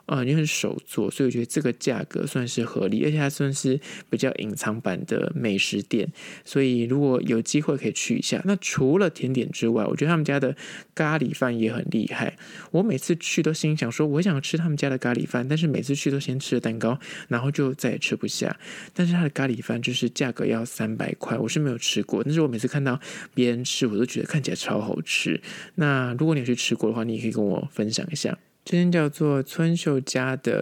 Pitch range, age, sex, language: 120-160 Hz, 20-39, male, Chinese